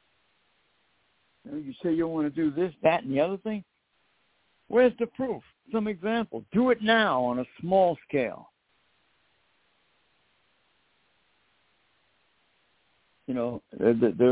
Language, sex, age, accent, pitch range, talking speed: English, male, 60-79, American, 125-170 Hz, 115 wpm